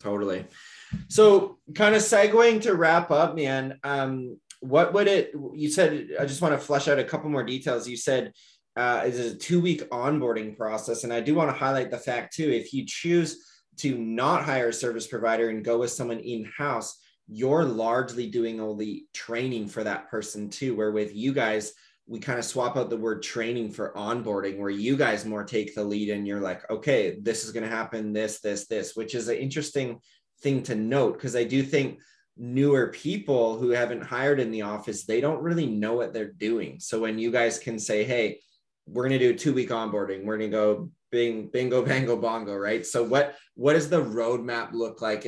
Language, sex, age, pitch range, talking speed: English, male, 20-39, 110-140 Hz, 205 wpm